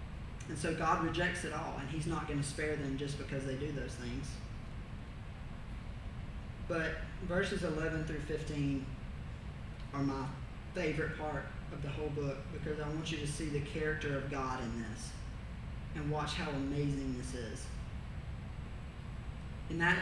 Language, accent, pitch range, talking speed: English, American, 115-155 Hz, 155 wpm